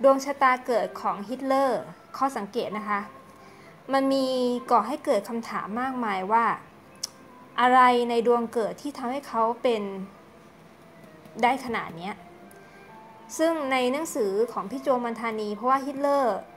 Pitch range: 215-265 Hz